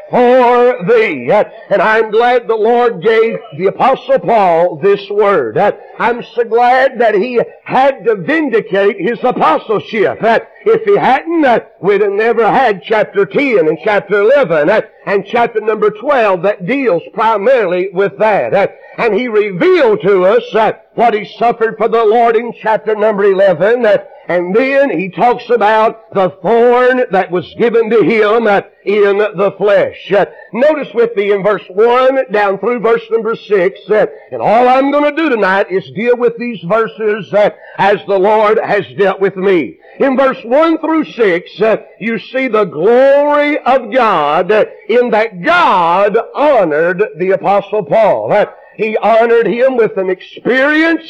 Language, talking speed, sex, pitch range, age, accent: English, 150 wpm, male, 205-265 Hz, 60-79, American